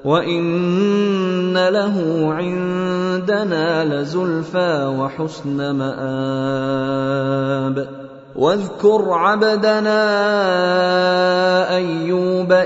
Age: 30-49